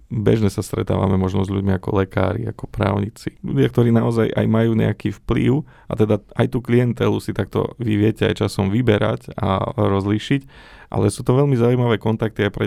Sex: male